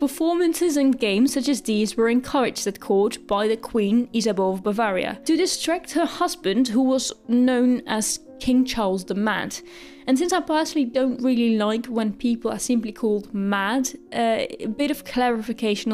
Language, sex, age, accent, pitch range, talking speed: English, female, 10-29, British, 220-285 Hz, 175 wpm